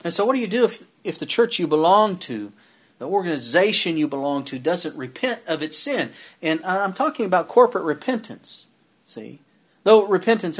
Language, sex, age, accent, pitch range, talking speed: English, male, 50-69, American, 135-225 Hz, 180 wpm